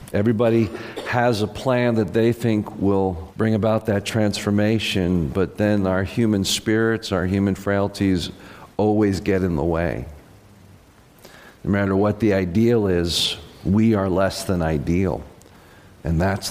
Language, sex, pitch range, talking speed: English, male, 95-130 Hz, 140 wpm